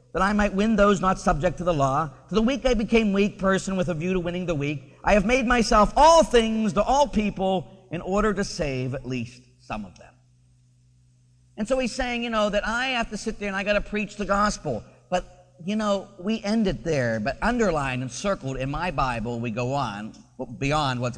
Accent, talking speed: American, 225 wpm